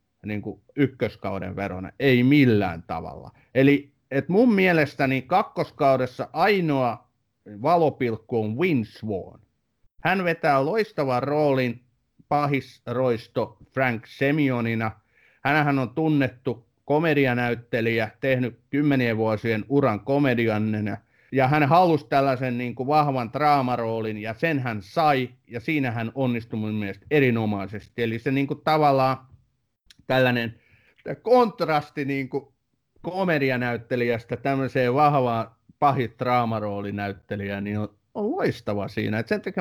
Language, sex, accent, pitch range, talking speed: Finnish, male, native, 115-150 Hz, 110 wpm